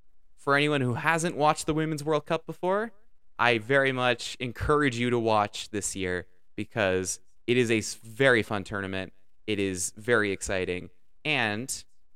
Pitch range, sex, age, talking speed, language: 100-150 Hz, male, 20-39, 155 wpm, English